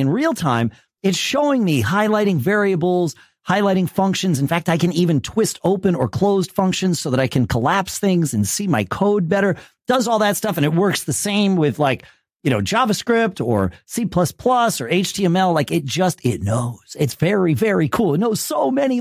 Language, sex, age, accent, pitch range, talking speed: English, male, 40-59, American, 145-215 Hz, 195 wpm